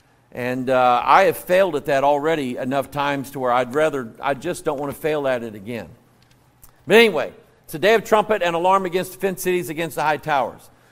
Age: 50-69